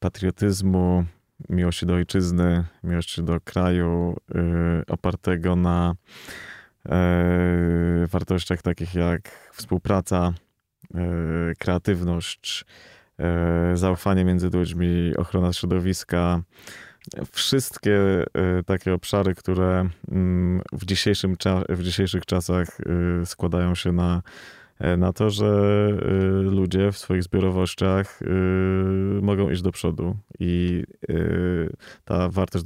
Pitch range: 90-95 Hz